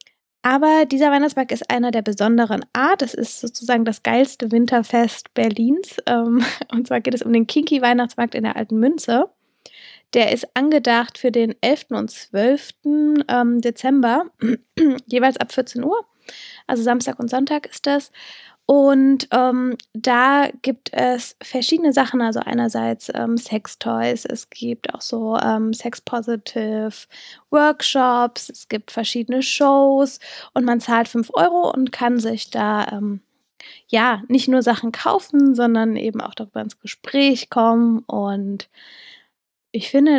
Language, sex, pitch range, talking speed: German, female, 230-275 Hz, 135 wpm